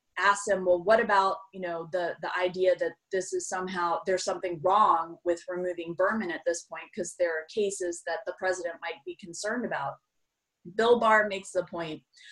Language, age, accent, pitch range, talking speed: English, 30-49, American, 180-230 Hz, 190 wpm